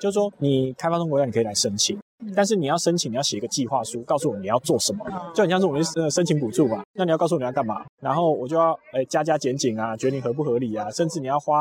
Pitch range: 135-185 Hz